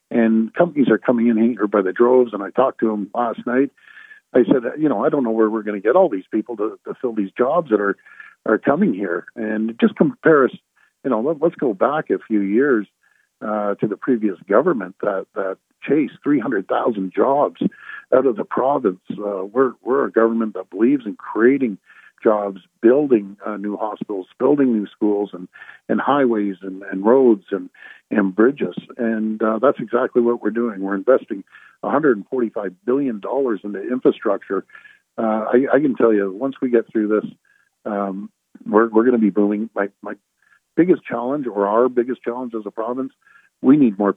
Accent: American